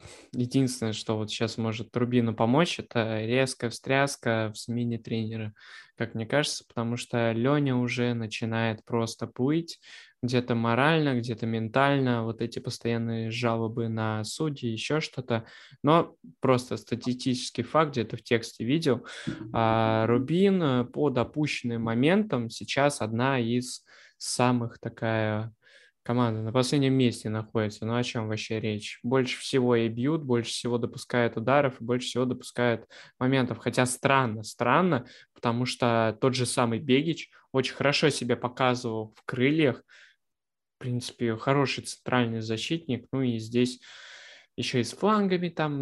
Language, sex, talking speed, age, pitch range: Russian, male, 140 wpm, 20-39, 115-135 Hz